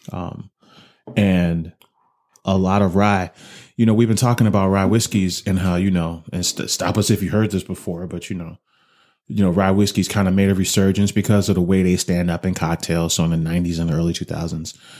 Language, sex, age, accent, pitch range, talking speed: English, male, 30-49, American, 90-105 Hz, 215 wpm